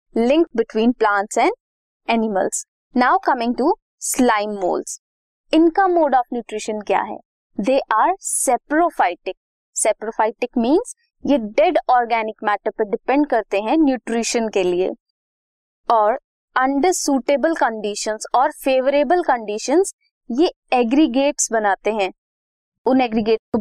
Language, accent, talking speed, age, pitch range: Hindi, native, 80 wpm, 20-39, 225-310 Hz